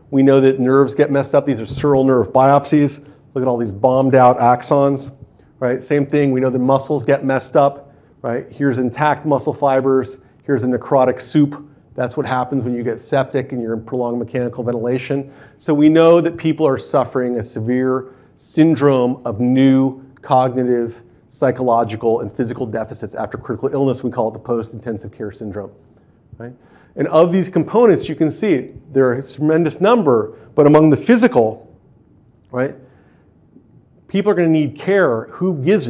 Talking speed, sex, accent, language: 170 wpm, male, American, English